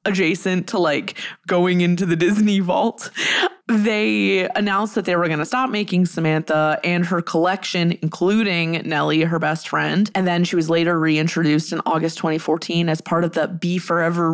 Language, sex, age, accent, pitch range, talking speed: English, female, 20-39, American, 165-205 Hz, 170 wpm